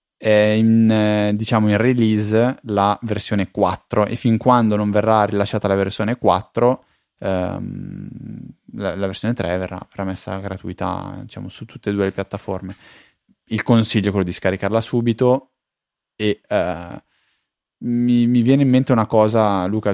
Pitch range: 100-120 Hz